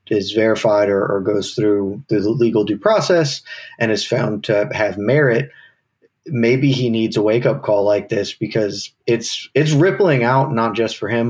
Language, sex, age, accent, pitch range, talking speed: English, male, 30-49, American, 105-135 Hz, 180 wpm